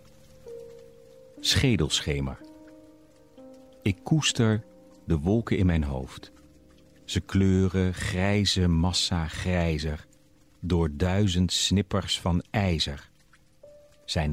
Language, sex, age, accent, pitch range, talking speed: Dutch, male, 50-69, Dutch, 85-115 Hz, 80 wpm